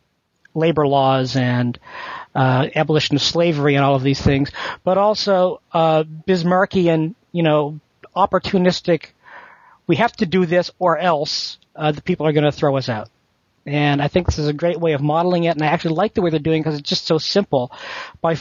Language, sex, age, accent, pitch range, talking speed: English, male, 40-59, American, 145-175 Hz, 200 wpm